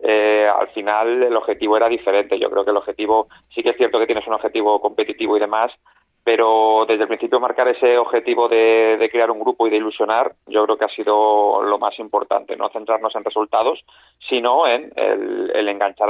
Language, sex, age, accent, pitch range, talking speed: Spanish, male, 30-49, Spanish, 105-120 Hz, 205 wpm